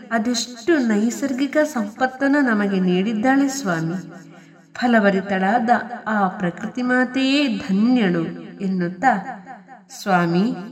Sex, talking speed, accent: female, 75 wpm, native